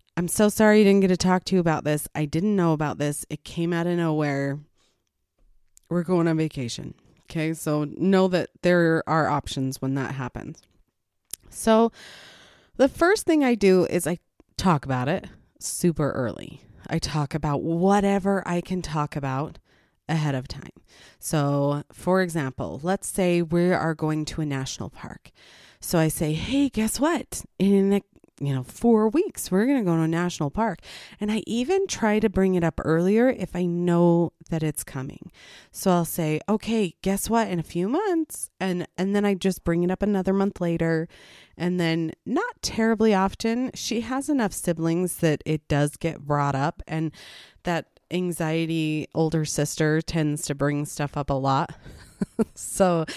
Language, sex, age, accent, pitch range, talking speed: English, female, 30-49, American, 150-190 Hz, 175 wpm